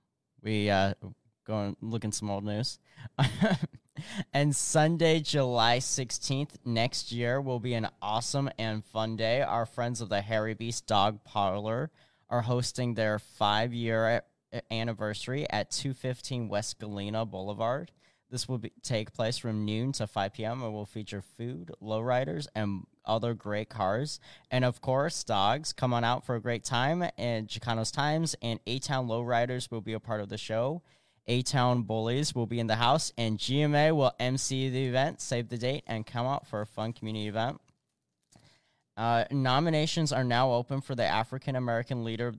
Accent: American